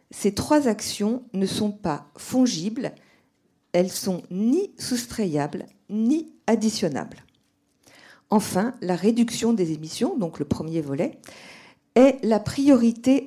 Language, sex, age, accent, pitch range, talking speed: French, female, 50-69, French, 180-250 Hz, 120 wpm